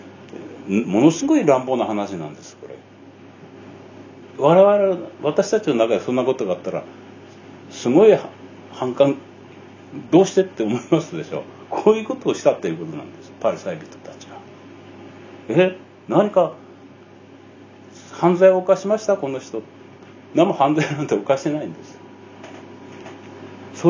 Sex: male